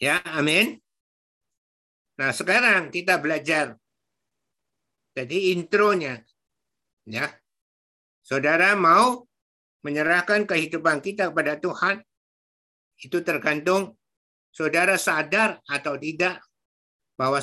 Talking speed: 80 wpm